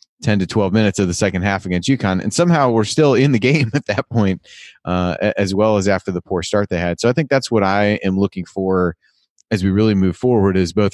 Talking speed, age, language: 250 wpm, 30-49, English